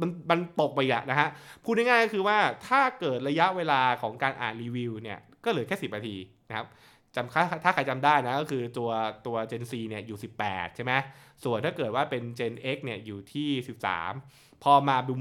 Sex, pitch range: male, 115-150 Hz